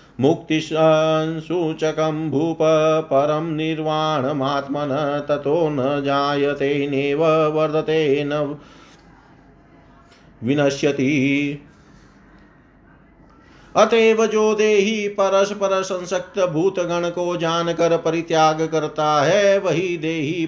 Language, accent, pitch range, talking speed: Hindi, native, 150-195 Hz, 65 wpm